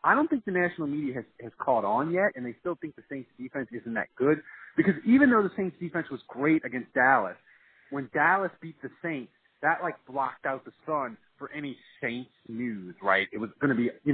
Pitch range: 120-165 Hz